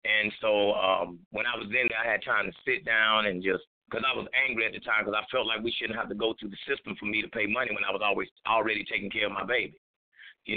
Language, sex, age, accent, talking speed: English, male, 30-49, American, 290 wpm